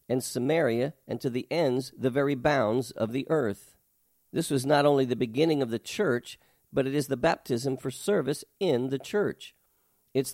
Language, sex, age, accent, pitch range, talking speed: English, male, 50-69, American, 125-155 Hz, 185 wpm